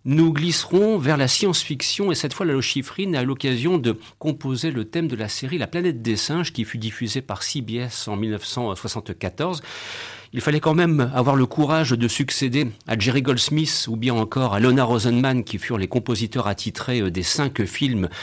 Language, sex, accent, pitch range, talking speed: French, male, French, 105-135 Hz, 190 wpm